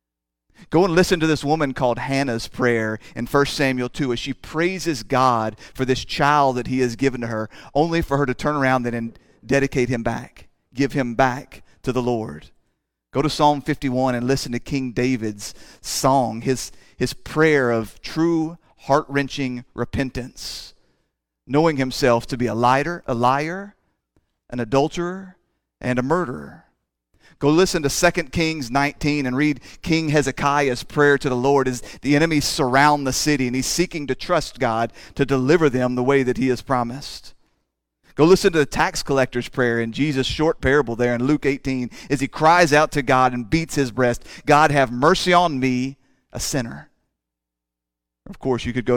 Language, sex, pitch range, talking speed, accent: English, male, 120-145 Hz, 175 wpm, American